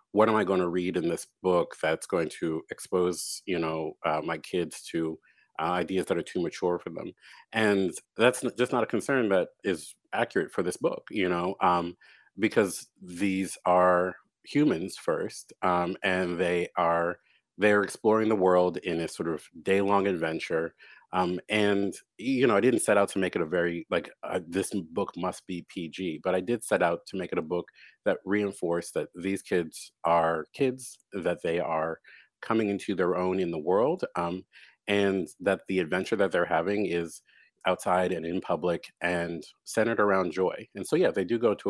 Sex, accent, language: male, American, English